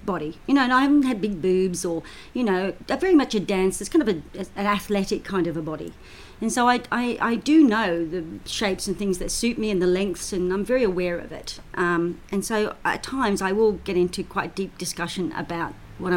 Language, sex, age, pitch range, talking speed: English, female, 40-59, 175-230 Hz, 235 wpm